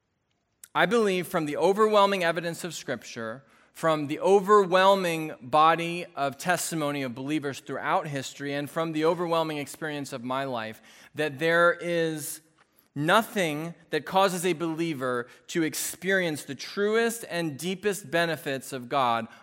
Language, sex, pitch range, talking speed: English, male, 110-165 Hz, 135 wpm